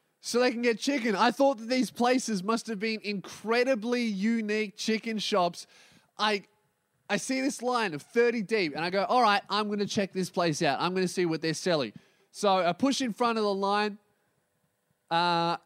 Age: 20-39